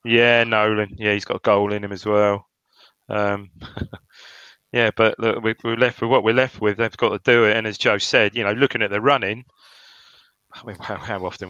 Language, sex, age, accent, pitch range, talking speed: English, male, 30-49, British, 100-120 Hz, 210 wpm